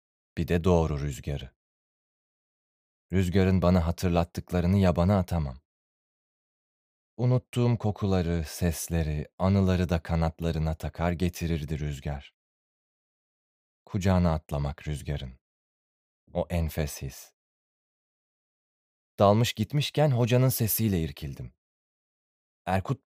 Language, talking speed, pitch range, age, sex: Turkish, 80 wpm, 75-105 Hz, 30-49, male